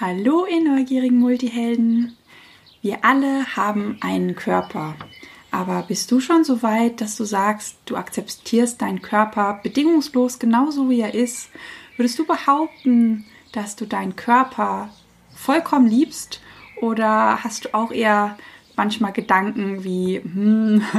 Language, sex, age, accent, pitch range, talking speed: German, female, 20-39, German, 195-245 Hz, 130 wpm